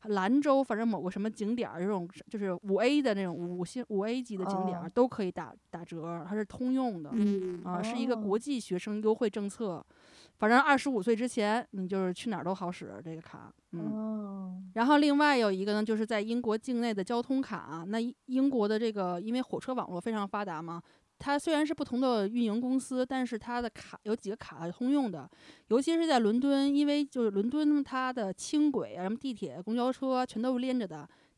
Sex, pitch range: female, 190-245 Hz